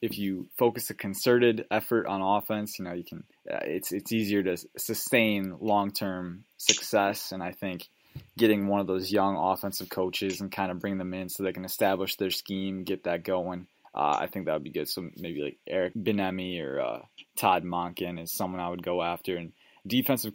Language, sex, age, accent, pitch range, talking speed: English, male, 20-39, American, 95-110 Hz, 205 wpm